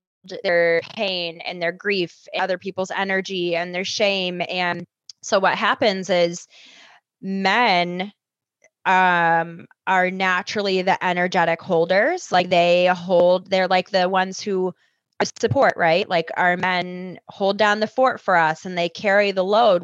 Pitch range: 170-190 Hz